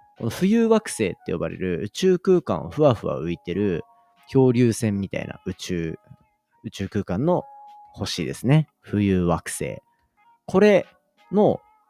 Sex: male